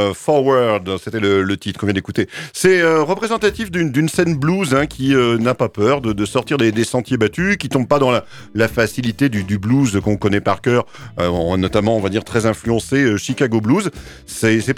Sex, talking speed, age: male, 225 wpm, 40-59